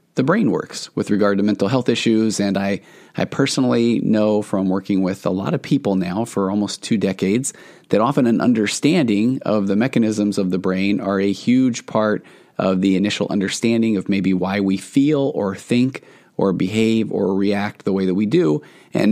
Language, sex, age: English, male, 30-49